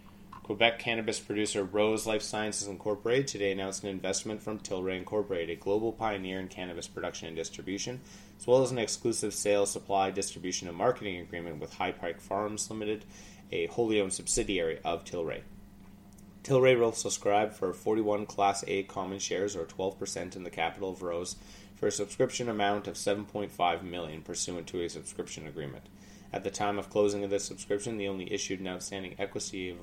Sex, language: male, English